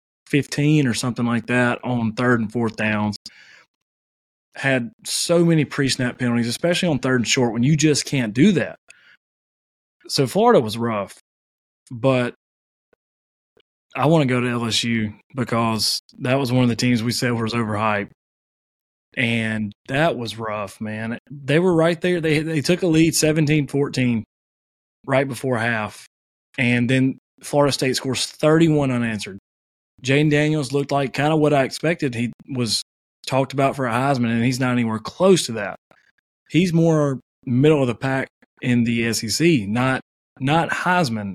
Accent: American